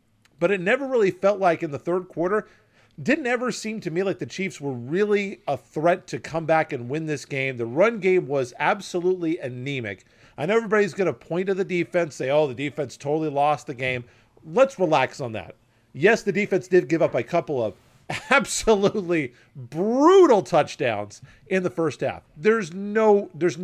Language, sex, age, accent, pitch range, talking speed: English, male, 40-59, American, 135-190 Hz, 190 wpm